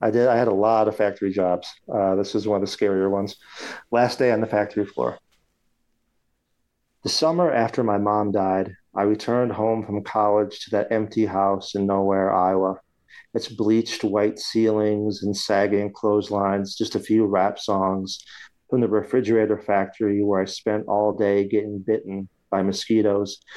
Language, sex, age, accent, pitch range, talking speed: English, male, 40-59, American, 100-115 Hz, 170 wpm